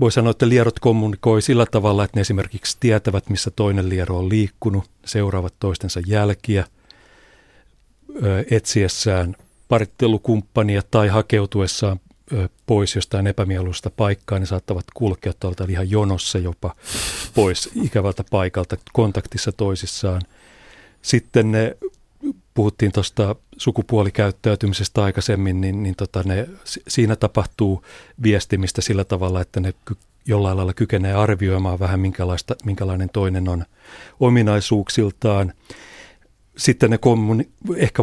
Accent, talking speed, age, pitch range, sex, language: native, 105 wpm, 40-59, 95-115 Hz, male, Finnish